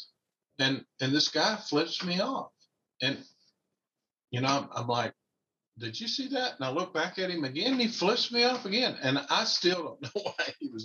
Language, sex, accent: English, male, American